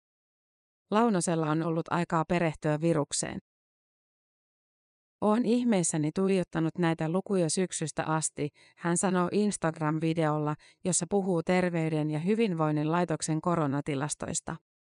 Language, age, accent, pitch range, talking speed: Finnish, 30-49, native, 155-185 Hz, 90 wpm